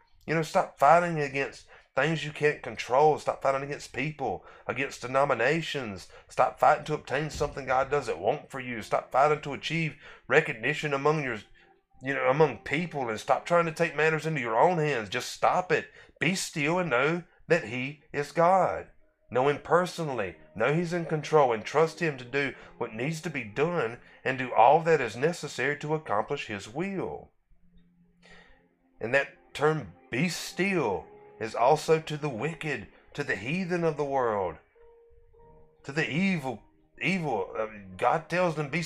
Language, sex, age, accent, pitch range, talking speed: English, male, 30-49, American, 135-170 Hz, 165 wpm